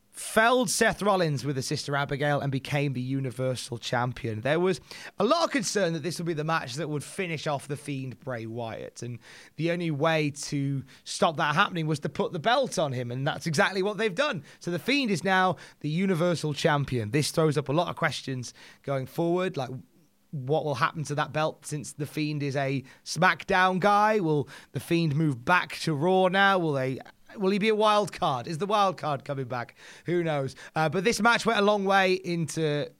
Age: 20-39